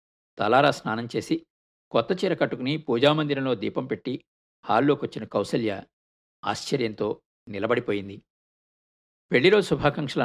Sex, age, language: male, 50-69, Telugu